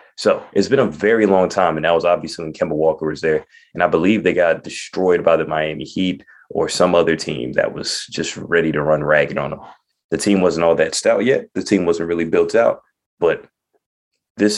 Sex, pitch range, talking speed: male, 80-100 Hz, 220 wpm